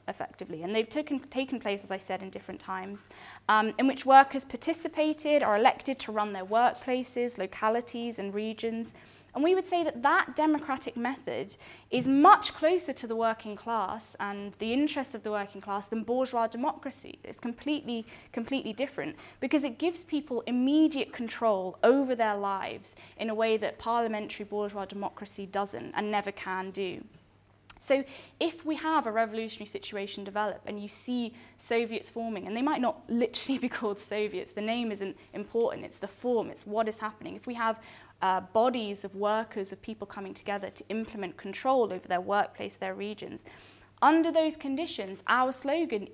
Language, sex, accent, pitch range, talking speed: English, female, British, 205-270 Hz, 170 wpm